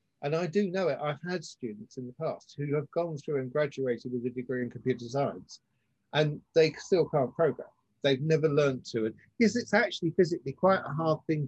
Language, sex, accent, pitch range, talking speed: English, male, British, 135-175 Hz, 215 wpm